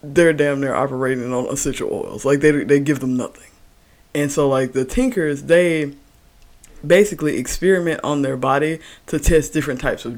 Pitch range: 130-150 Hz